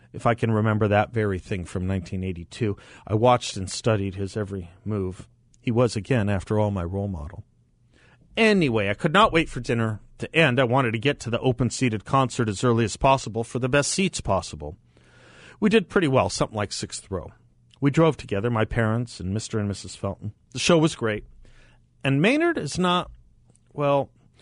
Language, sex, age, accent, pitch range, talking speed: English, male, 40-59, American, 100-130 Hz, 190 wpm